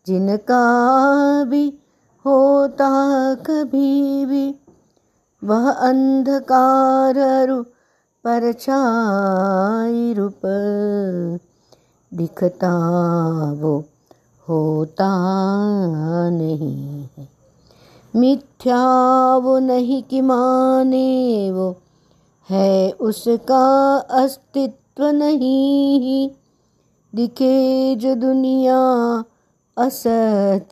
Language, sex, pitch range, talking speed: Hindi, female, 195-270 Hz, 55 wpm